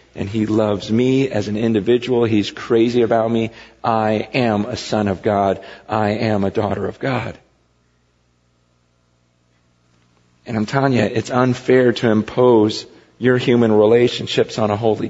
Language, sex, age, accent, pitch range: Korean, male, 40-59, American, 95-120 Hz